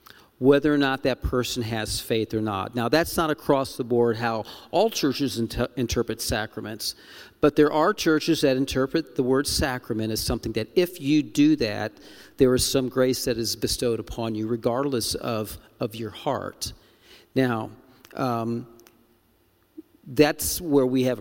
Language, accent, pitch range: English, American, 115-140 Hz